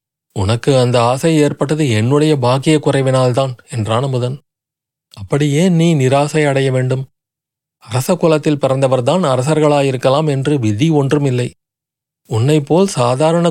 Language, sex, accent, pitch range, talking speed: Tamil, male, native, 125-150 Hz, 100 wpm